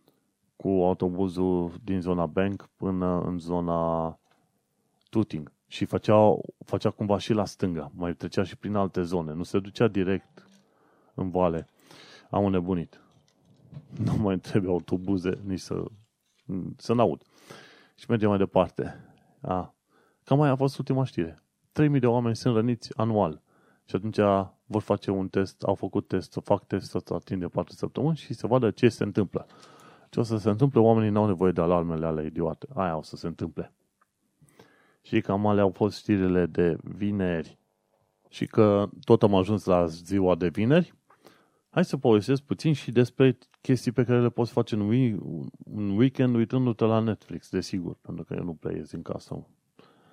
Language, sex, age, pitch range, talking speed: Romanian, male, 30-49, 90-115 Hz, 165 wpm